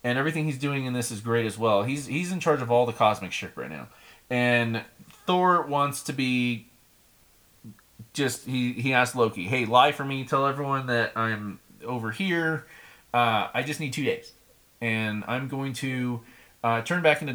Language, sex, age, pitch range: English, male, 30-49, 115-140 Hz